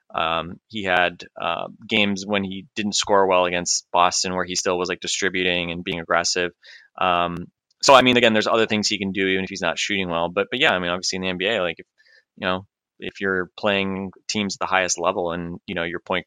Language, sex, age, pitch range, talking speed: English, male, 20-39, 90-100 Hz, 230 wpm